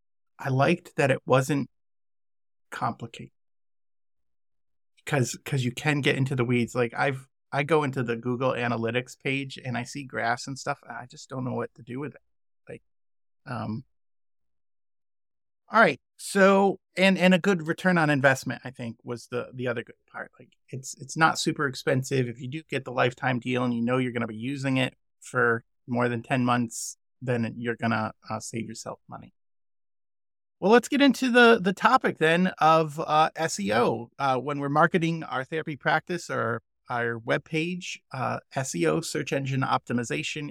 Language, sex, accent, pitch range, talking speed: English, male, American, 120-160 Hz, 180 wpm